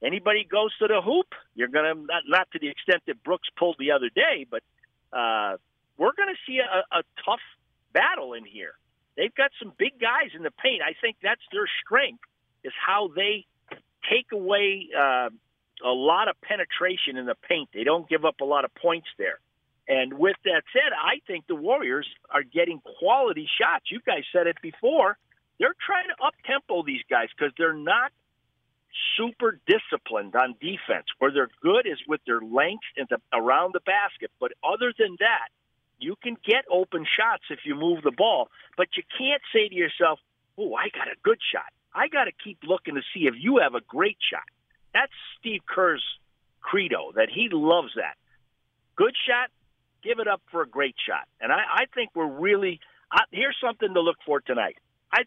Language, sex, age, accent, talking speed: English, male, 50-69, American, 195 wpm